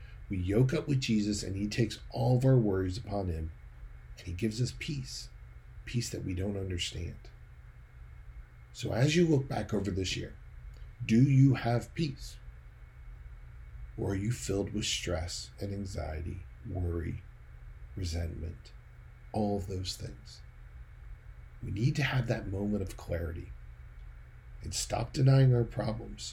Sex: male